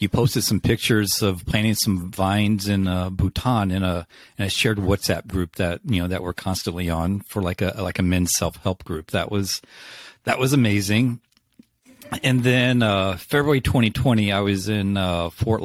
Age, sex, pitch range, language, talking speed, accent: 40-59, male, 95-125 Hz, English, 180 wpm, American